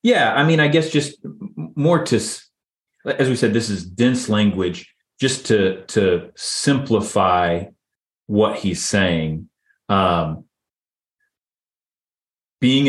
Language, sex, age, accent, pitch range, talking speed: English, male, 30-49, American, 95-115 Hz, 110 wpm